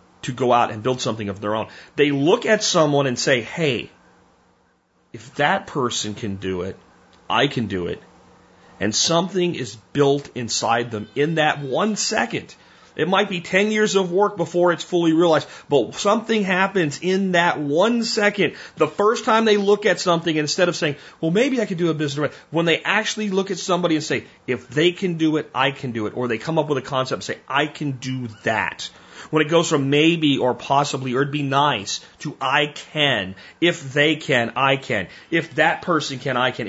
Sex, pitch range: male, 110-165 Hz